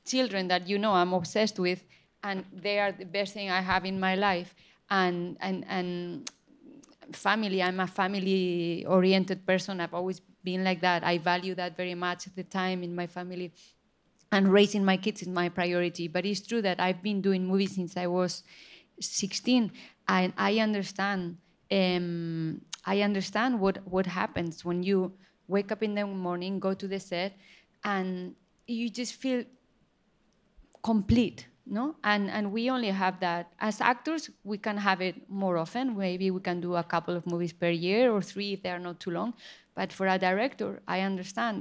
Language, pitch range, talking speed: English, 180-205 Hz, 185 wpm